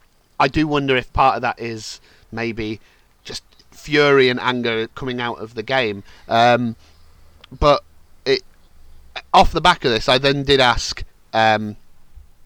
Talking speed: 145 wpm